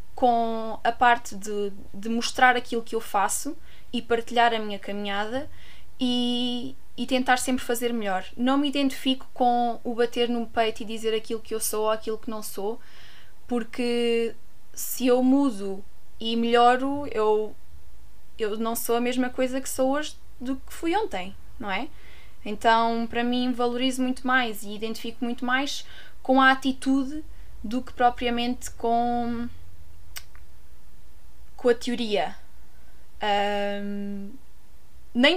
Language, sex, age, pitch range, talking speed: Portuguese, female, 20-39, 220-260 Hz, 140 wpm